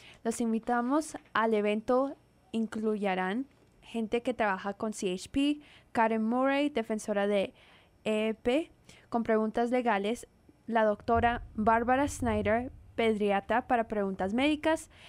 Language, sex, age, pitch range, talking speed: English, female, 10-29, 215-250 Hz, 105 wpm